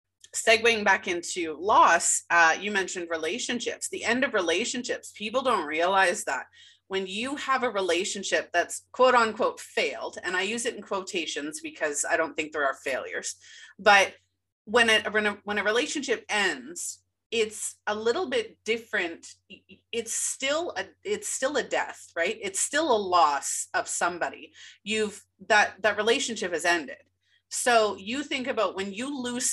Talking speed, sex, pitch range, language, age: 160 wpm, female, 185-250 Hz, English, 30-49